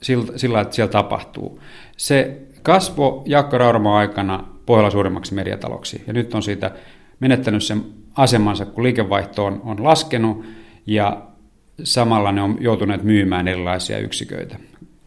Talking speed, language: 125 wpm, Finnish